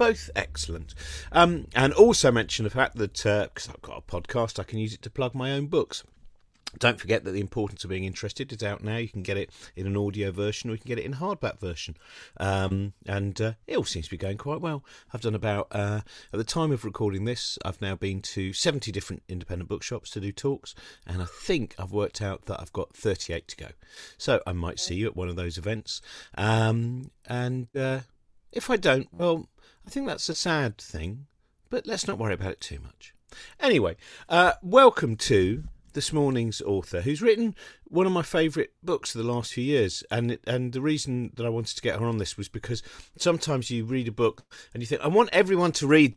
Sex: male